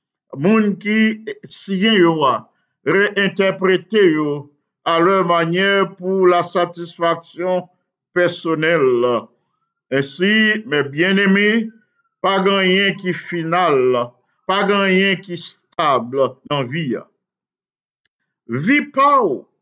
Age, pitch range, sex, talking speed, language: 50-69, 170-210 Hz, male, 85 wpm, English